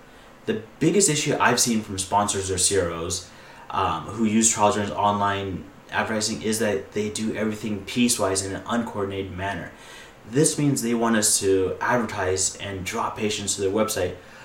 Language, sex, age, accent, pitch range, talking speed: English, male, 30-49, American, 95-120 Hz, 160 wpm